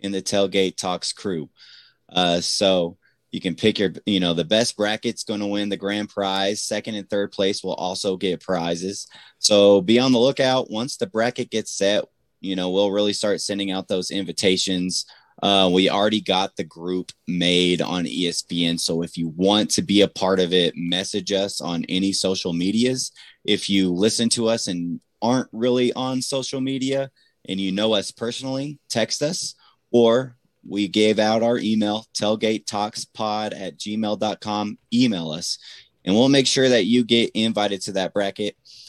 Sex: male